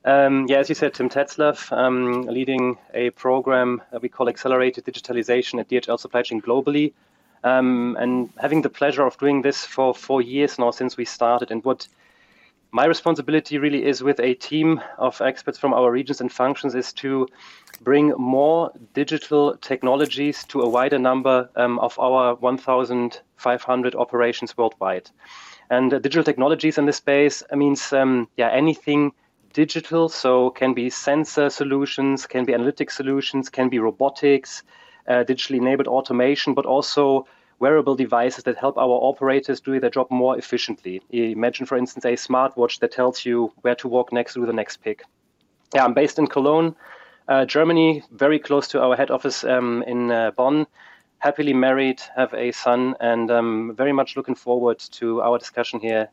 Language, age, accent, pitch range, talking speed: English, 30-49, German, 125-140 Hz, 170 wpm